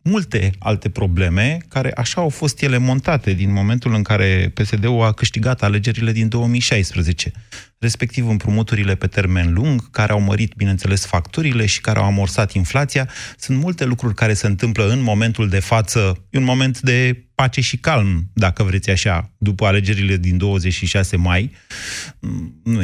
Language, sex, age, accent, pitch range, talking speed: Romanian, male, 30-49, native, 100-130 Hz, 160 wpm